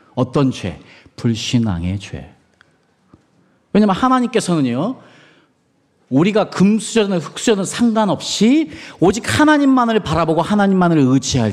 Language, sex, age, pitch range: Korean, male, 40-59, 125-210 Hz